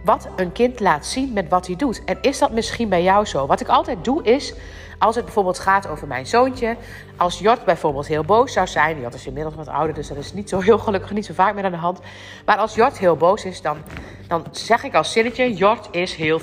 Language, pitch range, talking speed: Dutch, 150-225 Hz, 250 wpm